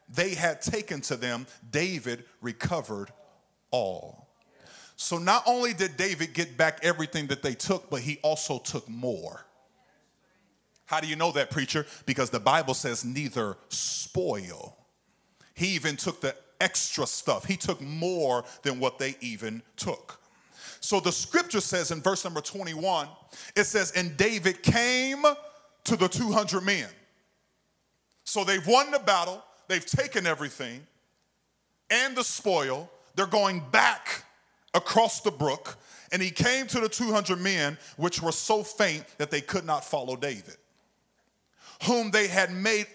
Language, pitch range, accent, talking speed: English, 145-200 Hz, American, 145 wpm